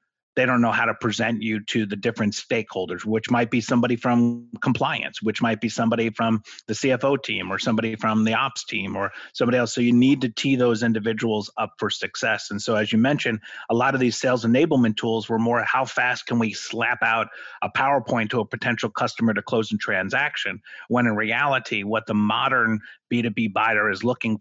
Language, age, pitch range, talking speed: English, 30-49, 110-125 Hz, 205 wpm